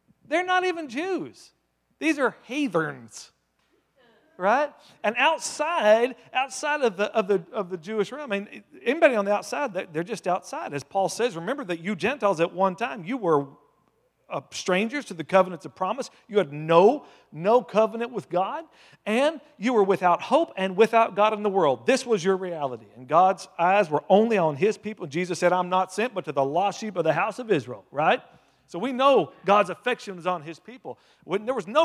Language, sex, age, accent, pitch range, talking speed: English, male, 40-59, American, 150-215 Hz, 195 wpm